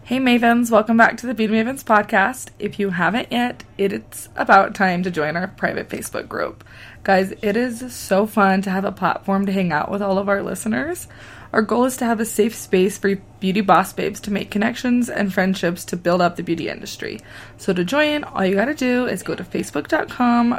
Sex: female